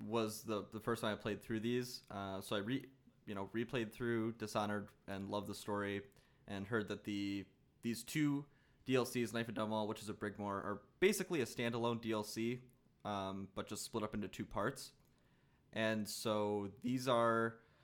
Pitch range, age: 105-120 Hz, 20-39